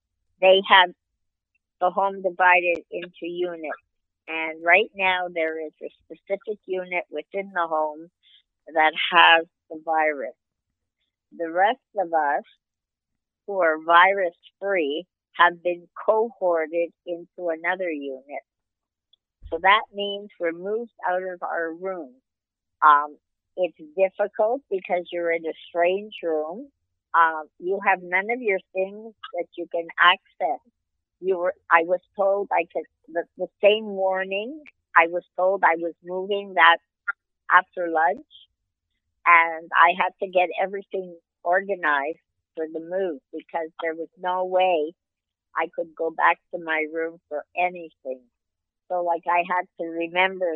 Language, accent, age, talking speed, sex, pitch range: English, American, 50-69, 135 wpm, female, 155-185 Hz